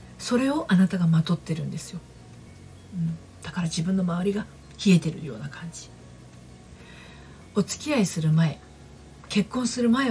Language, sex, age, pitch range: Japanese, female, 50-69, 135-185 Hz